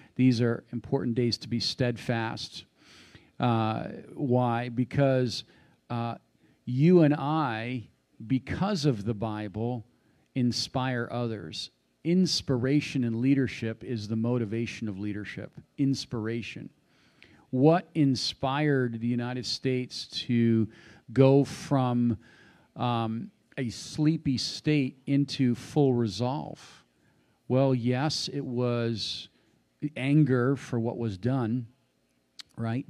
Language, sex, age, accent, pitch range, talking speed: English, male, 50-69, American, 110-135 Hz, 100 wpm